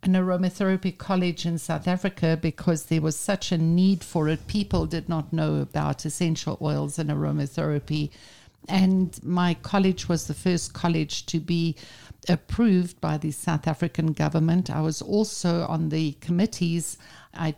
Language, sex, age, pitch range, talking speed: English, female, 60-79, 160-190 Hz, 155 wpm